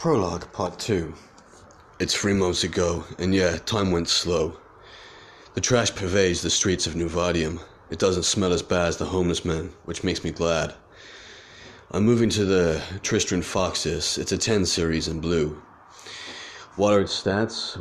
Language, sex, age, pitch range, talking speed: English, male, 30-49, 85-100 Hz, 160 wpm